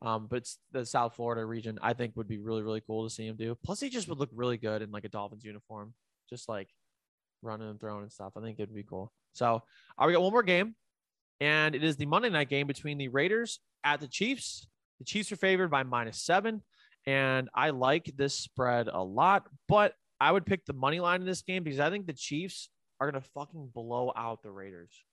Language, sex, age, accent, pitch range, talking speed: English, male, 20-39, American, 115-175 Hz, 230 wpm